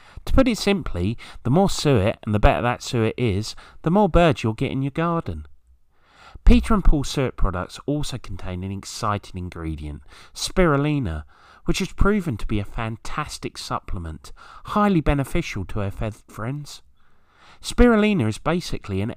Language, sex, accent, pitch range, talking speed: English, male, British, 95-145 Hz, 155 wpm